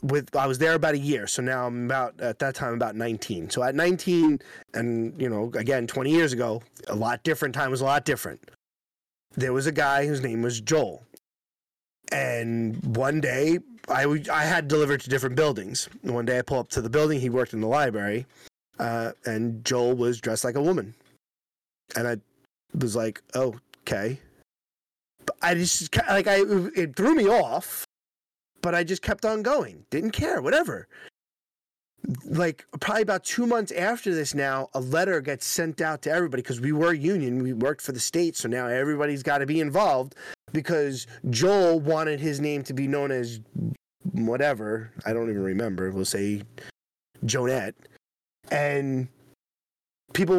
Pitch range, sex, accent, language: 120-160 Hz, male, American, English